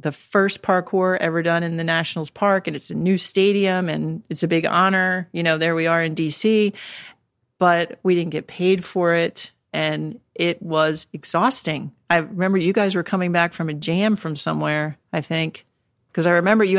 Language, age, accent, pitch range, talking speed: English, 40-59, American, 165-195 Hz, 195 wpm